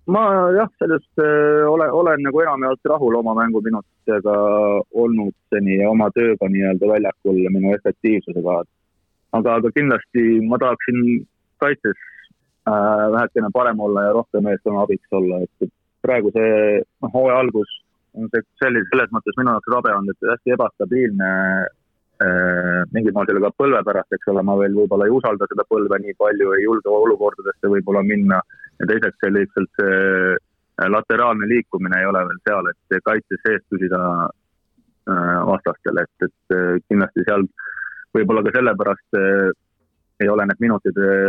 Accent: Finnish